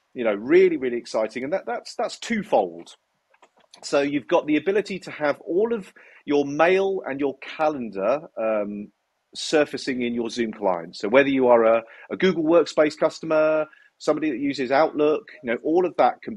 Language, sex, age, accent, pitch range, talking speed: English, male, 40-59, British, 115-185 Hz, 180 wpm